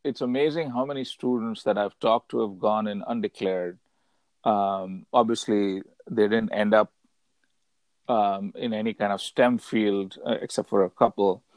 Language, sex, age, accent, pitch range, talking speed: English, male, 50-69, Indian, 100-130 Hz, 160 wpm